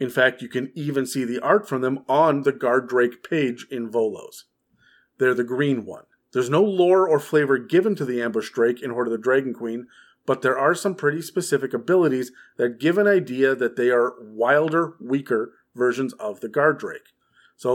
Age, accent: 40-59, American